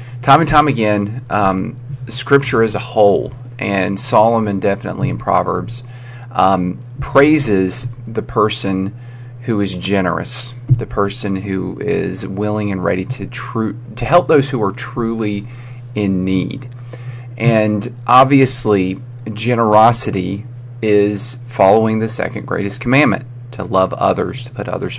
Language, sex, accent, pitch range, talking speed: English, male, American, 105-125 Hz, 125 wpm